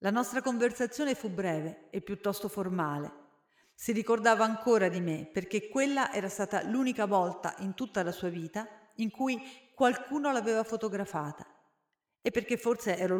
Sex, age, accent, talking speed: female, 40-59, native, 150 wpm